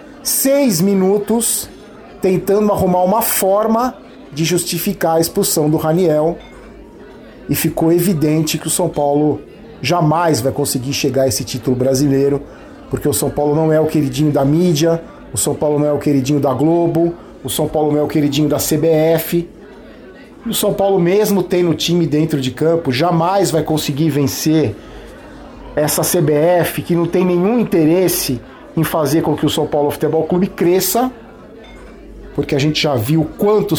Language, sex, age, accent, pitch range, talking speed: Portuguese, male, 40-59, Brazilian, 150-180 Hz, 165 wpm